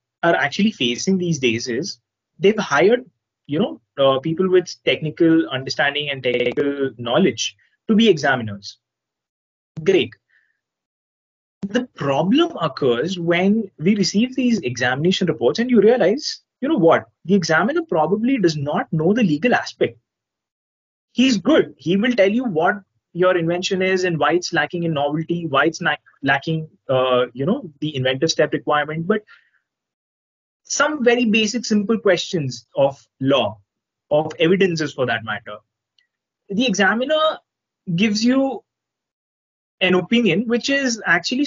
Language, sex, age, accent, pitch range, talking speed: English, male, 20-39, Indian, 135-205 Hz, 135 wpm